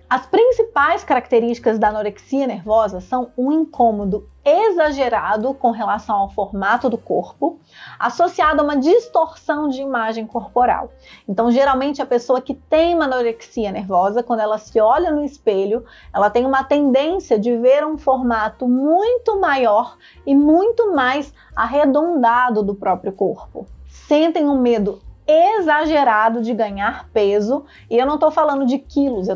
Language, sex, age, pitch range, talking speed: Portuguese, female, 20-39, 230-295 Hz, 145 wpm